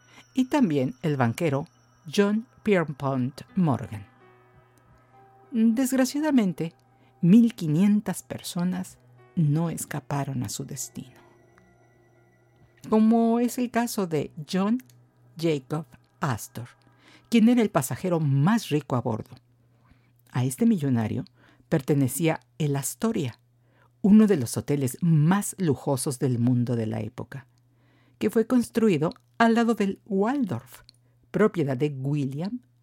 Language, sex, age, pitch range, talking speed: Spanish, female, 50-69, 125-185 Hz, 105 wpm